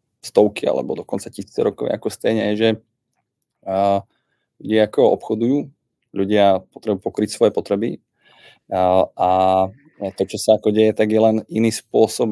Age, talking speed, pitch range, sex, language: 20-39, 130 wpm, 95-110 Hz, male, Czech